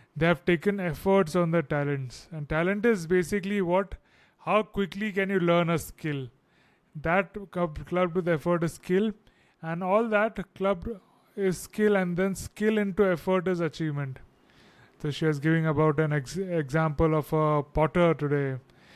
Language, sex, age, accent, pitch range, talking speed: English, male, 20-39, Indian, 160-195 Hz, 160 wpm